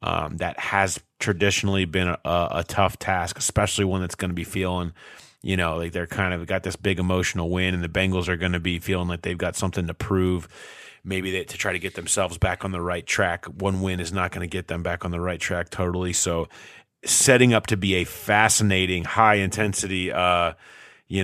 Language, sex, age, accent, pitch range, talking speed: English, male, 30-49, American, 90-105 Hz, 220 wpm